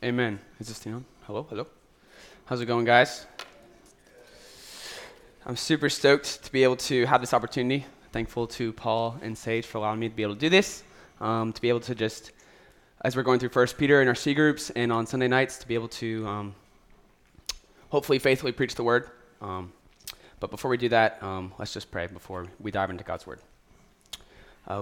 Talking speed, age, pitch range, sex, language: 195 wpm, 20-39, 100-120 Hz, male, English